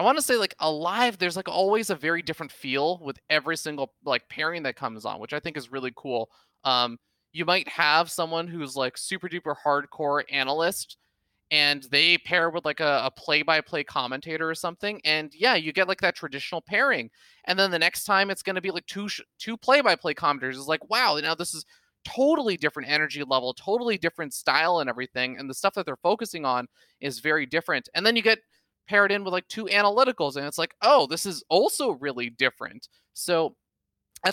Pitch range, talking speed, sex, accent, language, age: 135-180 Hz, 205 wpm, male, American, English, 20-39